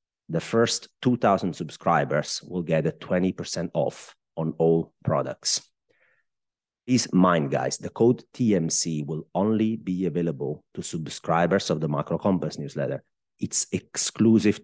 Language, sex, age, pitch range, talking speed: English, male, 30-49, 80-95 Hz, 125 wpm